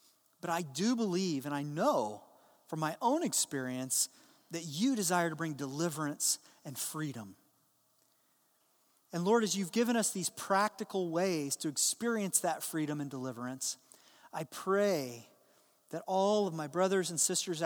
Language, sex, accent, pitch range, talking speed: English, male, American, 155-195 Hz, 145 wpm